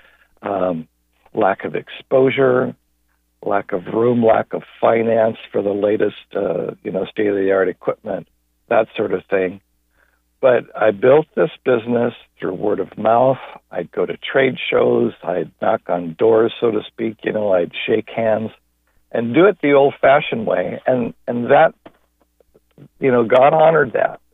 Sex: male